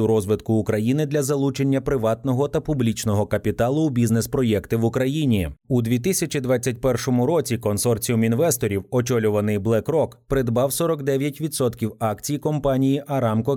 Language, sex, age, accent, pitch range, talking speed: Ukrainian, male, 30-49, native, 110-145 Hz, 105 wpm